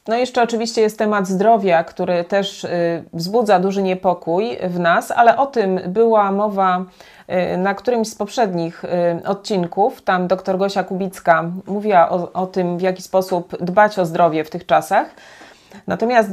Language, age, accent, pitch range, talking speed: Polish, 30-49, native, 180-240 Hz, 150 wpm